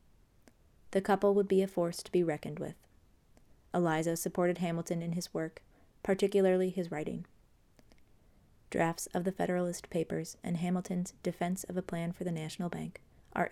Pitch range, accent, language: 160-185 Hz, American, English